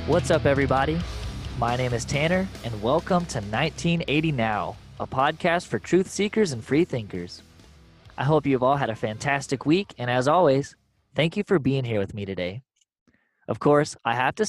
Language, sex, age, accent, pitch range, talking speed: English, male, 20-39, American, 115-160 Hz, 180 wpm